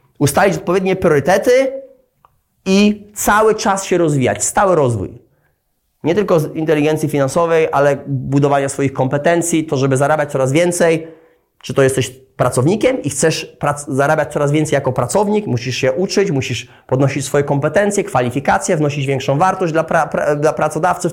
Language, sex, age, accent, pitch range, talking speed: Polish, male, 20-39, native, 140-185 Hz, 140 wpm